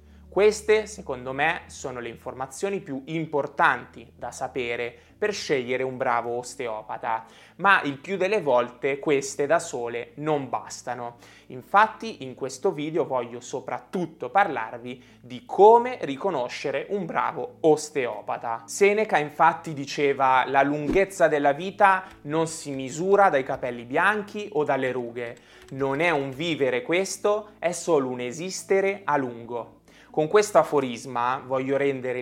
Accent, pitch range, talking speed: native, 125-175 Hz, 130 wpm